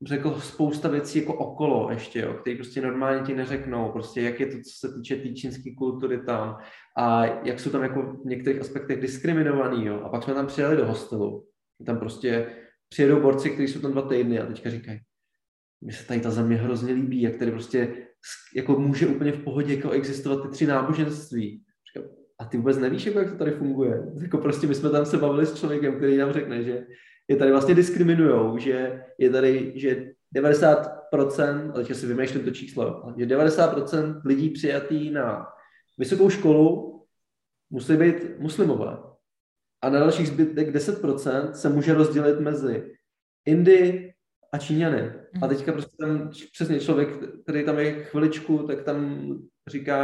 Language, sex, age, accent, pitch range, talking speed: Czech, male, 20-39, native, 125-150 Hz, 170 wpm